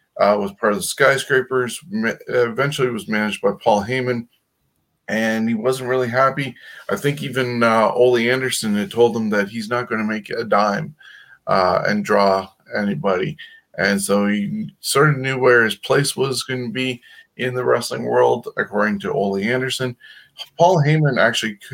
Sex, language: male, English